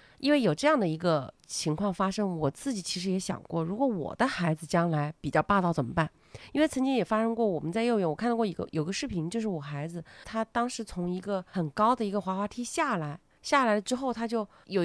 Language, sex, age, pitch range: Chinese, female, 30-49, 165-215 Hz